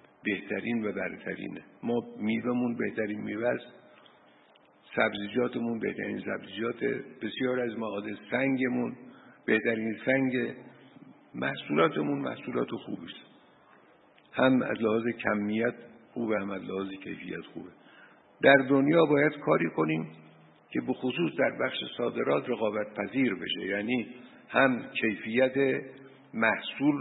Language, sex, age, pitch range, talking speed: Persian, male, 60-79, 100-125 Hz, 100 wpm